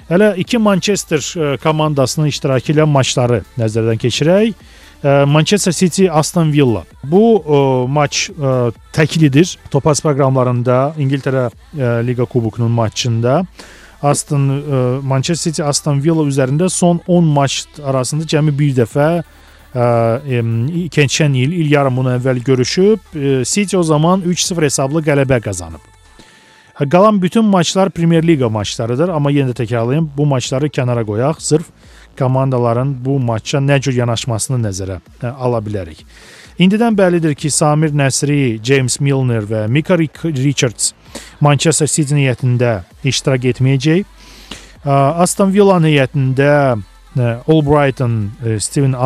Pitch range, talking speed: 125-155 Hz, 115 wpm